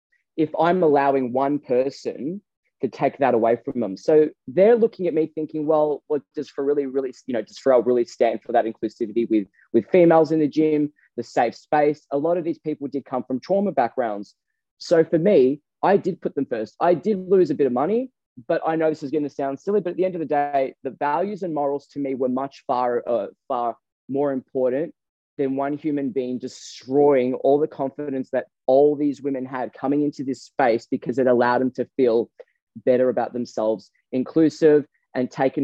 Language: English